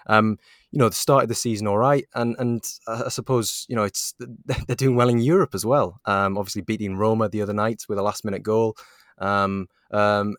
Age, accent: 20-39, British